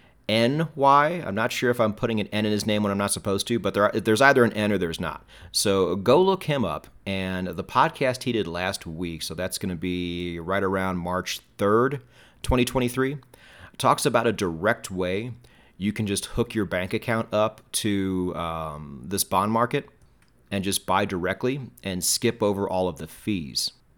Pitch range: 90-120 Hz